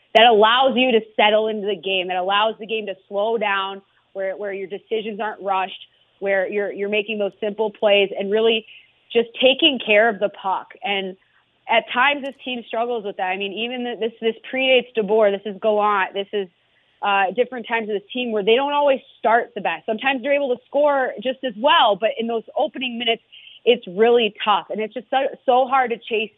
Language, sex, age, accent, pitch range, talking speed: English, female, 30-49, American, 200-240 Hz, 210 wpm